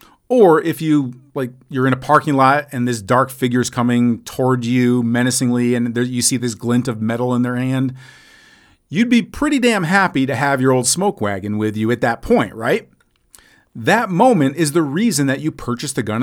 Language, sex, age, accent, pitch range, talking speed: English, male, 40-59, American, 120-160 Hz, 215 wpm